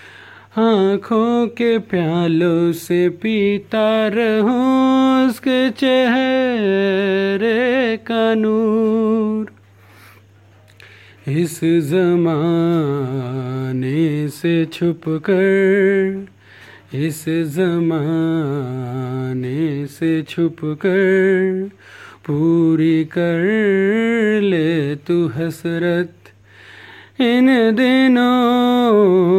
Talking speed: 50 wpm